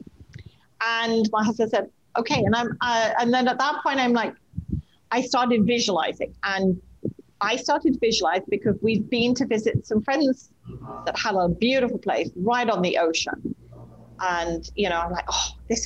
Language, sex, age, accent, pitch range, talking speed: English, female, 40-59, British, 195-255 Hz, 175 wpm